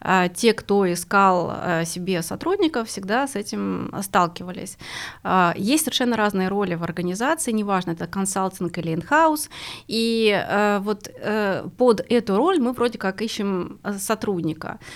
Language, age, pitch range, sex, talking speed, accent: Russian, 20-39, 190-250 Hz, female, 120 wpm, native